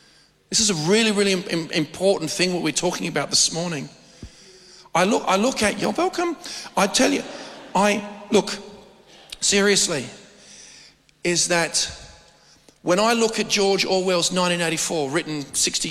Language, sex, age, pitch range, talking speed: English, male, 40-59, 160-210 Hz, 140 wpm